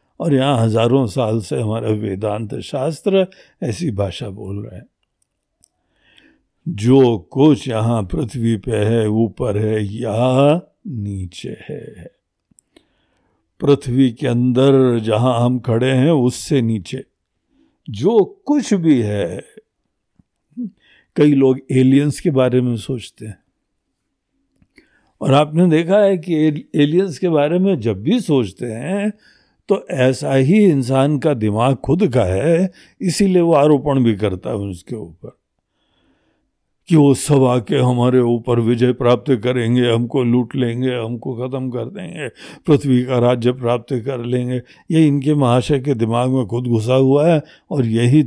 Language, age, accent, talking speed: Hindi, 60-79, native, 135 wpm